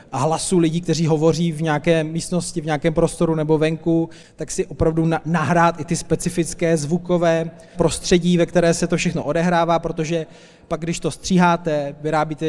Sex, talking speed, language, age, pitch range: male, 155 wpm, Czech, 20-39, 155-175 Hz